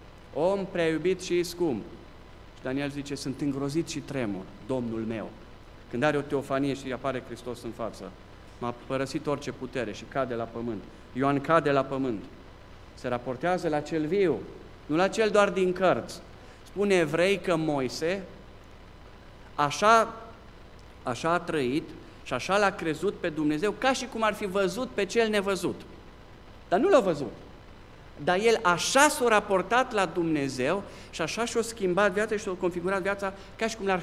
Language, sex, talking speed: Romanian, male, 165 wpm